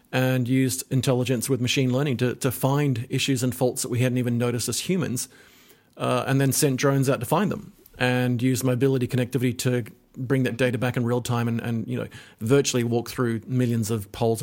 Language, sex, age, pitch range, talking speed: English, male, 40-59, 120-135 Hz, 210 wpm